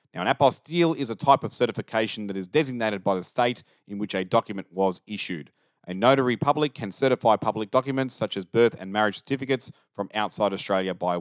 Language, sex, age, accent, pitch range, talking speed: English, male, 40-59, Australian, 95-125 Hz, 200 wpm